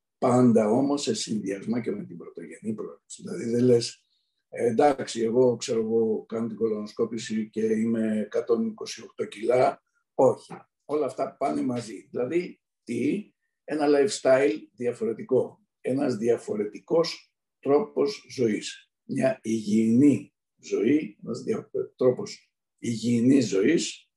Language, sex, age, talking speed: Greek, male, 60-79, 110 wpm